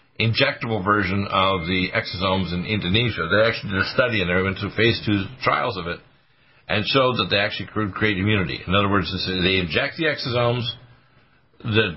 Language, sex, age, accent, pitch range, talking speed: English, male, 60-79, American, 95-120 Hz, 185 wpm